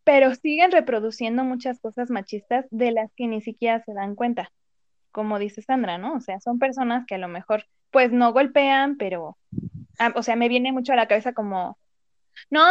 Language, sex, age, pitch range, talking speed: Spanish, female, 20-39, 230-285 Hz, 190 wpm